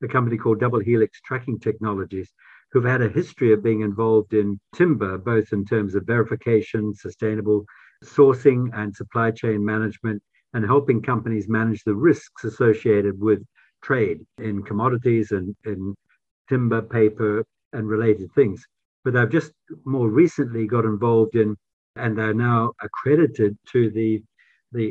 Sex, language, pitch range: male, English, 110-125 Hz